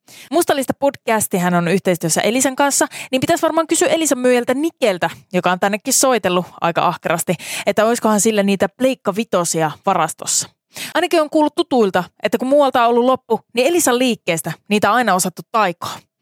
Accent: native